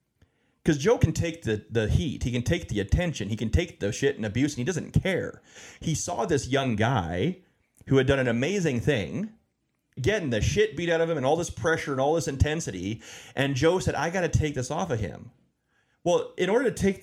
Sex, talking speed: male, 230 wpm